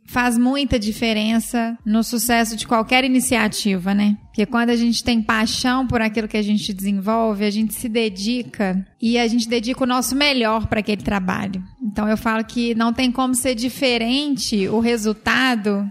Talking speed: 175 wpm